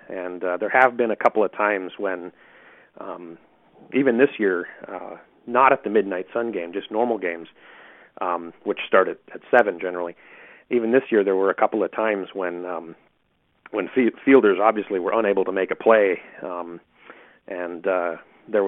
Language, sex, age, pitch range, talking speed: English, male, 40-59, 95-140 Hz, 175 wpm